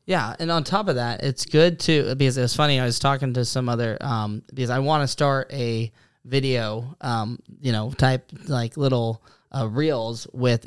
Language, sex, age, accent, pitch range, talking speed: English, male, 10-29, American, 125-150 Hz, 200 wpm